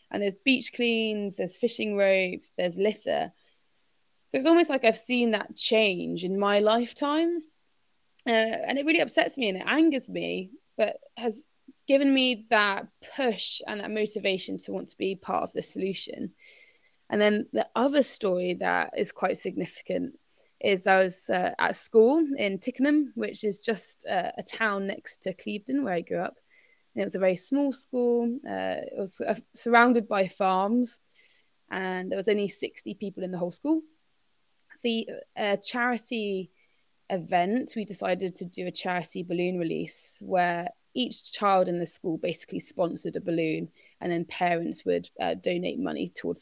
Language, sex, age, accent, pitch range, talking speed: English, female, 20-39, British, 190-255 Hz, 170 wpm